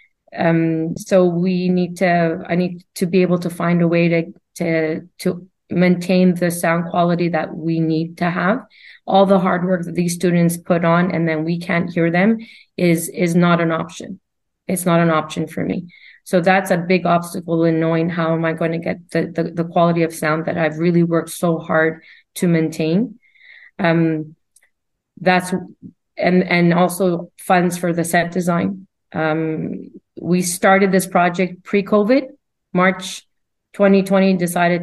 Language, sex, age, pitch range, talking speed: English, female, 30-49, 170-185 Hz, 170 wpm